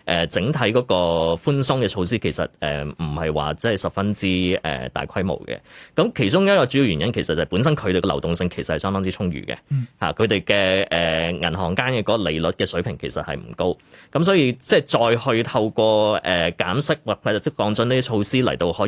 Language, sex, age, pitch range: Chinese, male, 20-39, 85-110 Hz